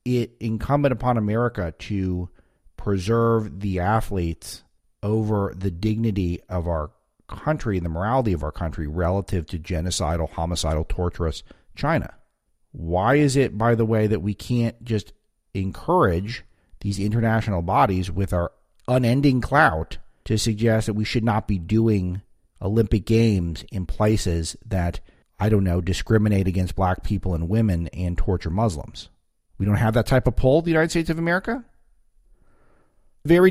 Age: 40-59